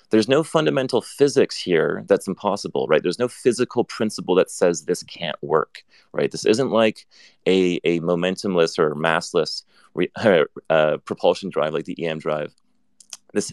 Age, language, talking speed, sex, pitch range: 30-49, English, 155 wpm, male, 85-110 Hz